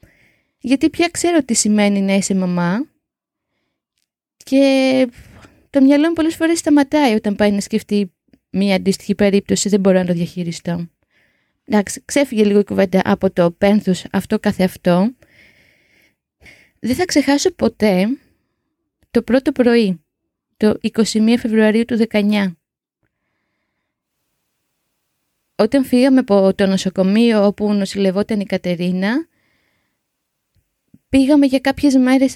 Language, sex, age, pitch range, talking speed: Greek, female, 20-39, 195-270 Hz, 115 wpm